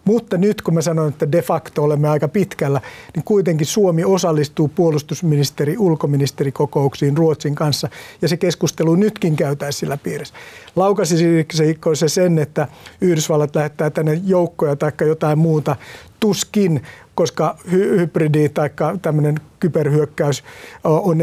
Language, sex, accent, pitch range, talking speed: Finnish, male, native, 150-185 Hz, 120 wpm